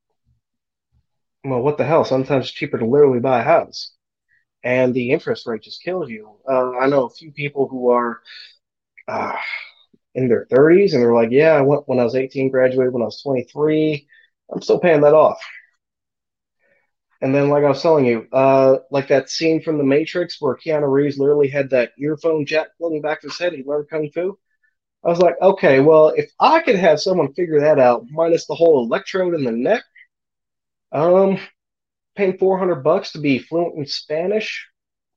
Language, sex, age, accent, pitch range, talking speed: English, male, 20-39, American, 130-160 Hz, 190 wpm